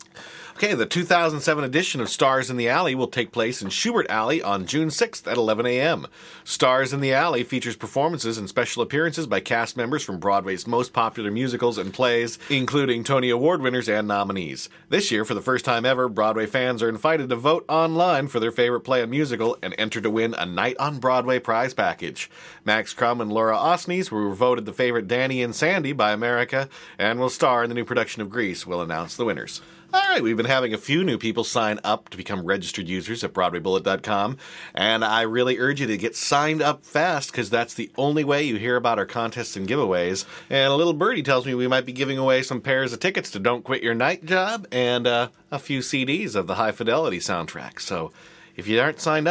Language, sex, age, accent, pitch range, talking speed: English, male, 40-59, American, 115-140 Hz, 215 wpm